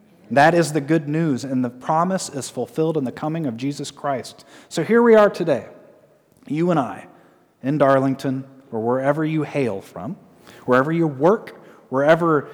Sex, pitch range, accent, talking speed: male, 115-170 Hz, American, 165 wpm